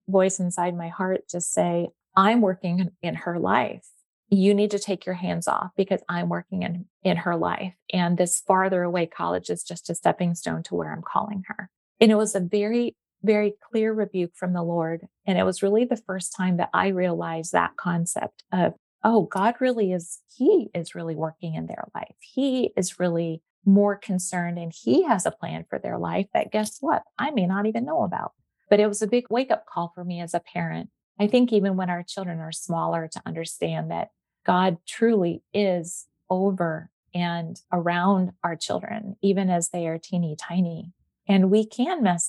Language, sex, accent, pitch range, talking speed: English, female, American, 170-200 Hz, 195 wpm